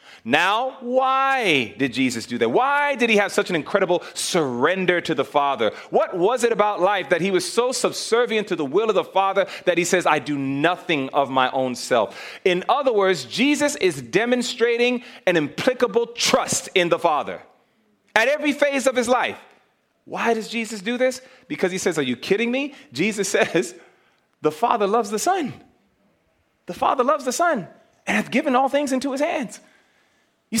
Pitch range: 170-250 Hz